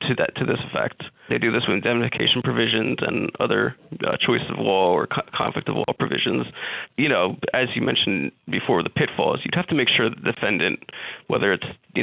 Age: 30-49